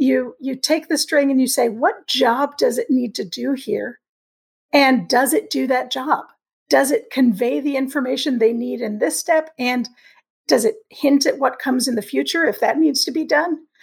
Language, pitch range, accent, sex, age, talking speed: English, 245-305 Hz, American, female, 50-69, 210 wpm